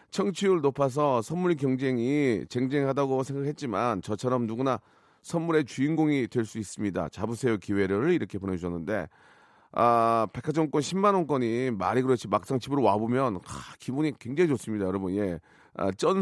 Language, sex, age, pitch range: Korean, male, 40-59, 115-175 Hz